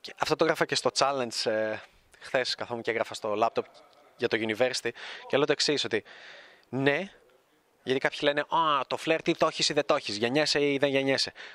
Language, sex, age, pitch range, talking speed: Greek, male, 20-39, 130-165 Hz, 210 wpm